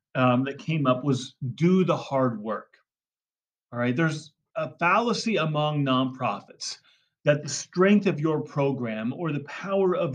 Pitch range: 130-165 Hz